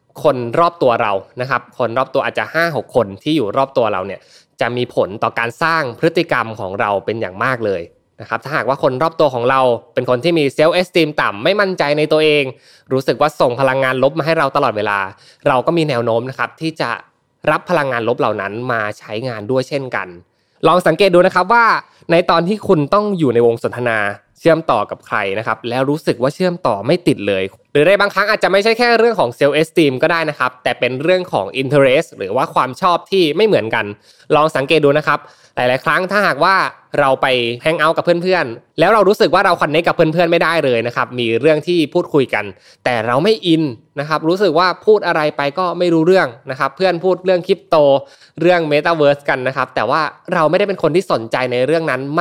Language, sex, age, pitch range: Thai, male, 20-39, 125-170 Hz